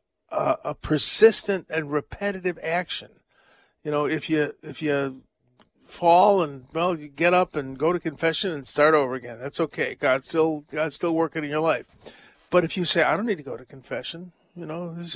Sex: male